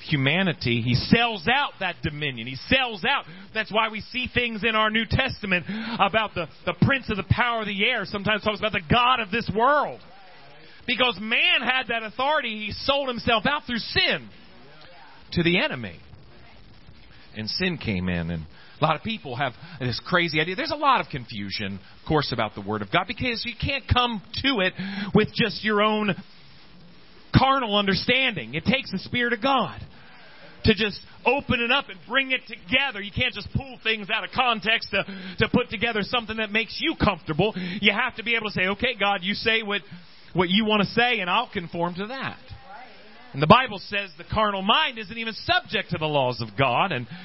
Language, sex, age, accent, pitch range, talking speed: English, male, 40-59, American, 170-230 Hz, 200 wpm